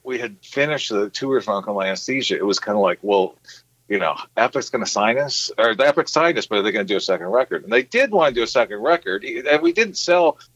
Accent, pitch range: American, 115-190 Hz